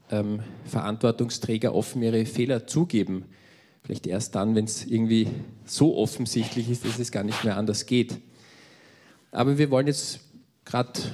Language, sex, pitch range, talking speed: German, male, 110-135 Hz, 140 wpm